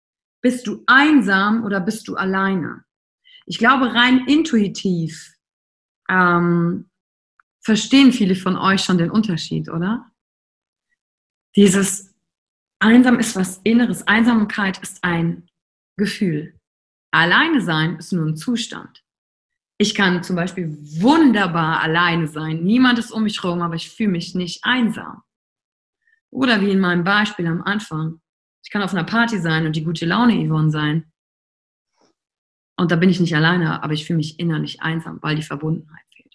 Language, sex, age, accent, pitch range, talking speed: German, female, 30-49, German, 170-230 Hz, 145 wpm